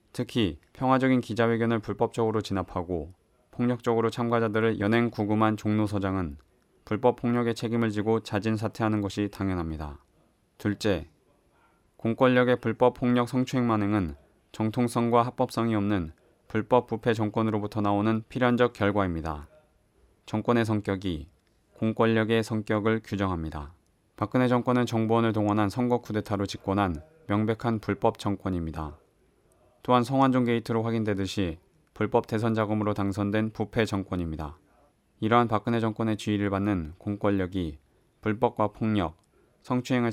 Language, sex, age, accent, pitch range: Korean, male, 20-39, native, 100-115 Hz